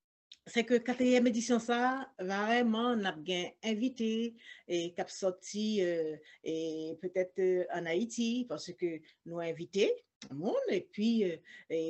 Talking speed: 125 wpm